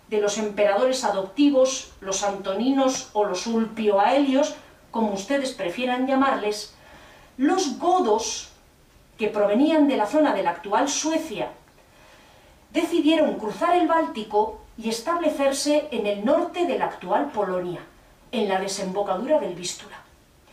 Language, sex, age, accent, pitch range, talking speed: Spanish, female, 40-59, Spanish, 215-310 Hz, 125 wpm